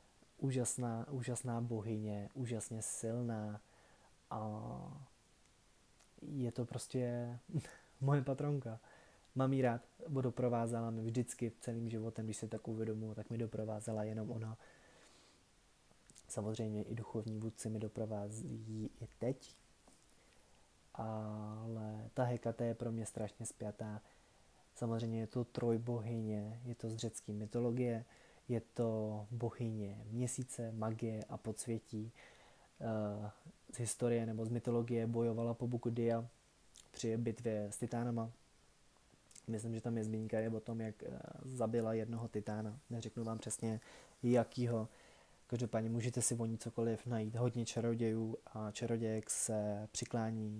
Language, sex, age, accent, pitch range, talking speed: Czech, male, 20-39, native, 110-120 Hz, 120 wpm